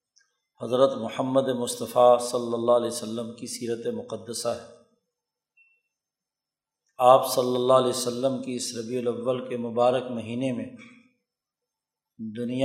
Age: 50-69